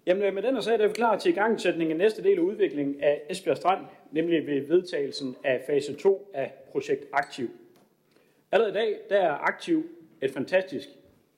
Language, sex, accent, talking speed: Danish, male, native, 190 wpm